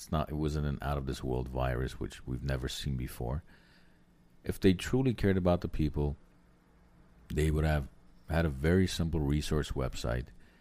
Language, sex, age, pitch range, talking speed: English, male, 50-69, 70-95 Hz, 155 wpm